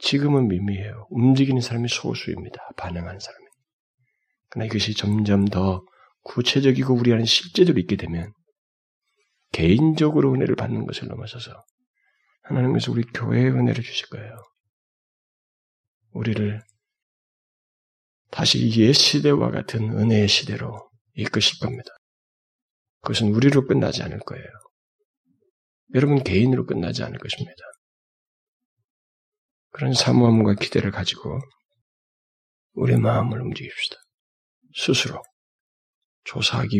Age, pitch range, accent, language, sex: 40-59, 105-135 Hz, native, Korean, male